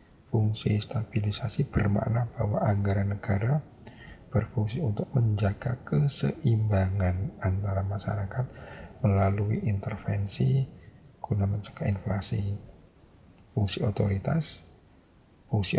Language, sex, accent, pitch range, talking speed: Indonesian, male, native, 100-125 Hz, 75 wpm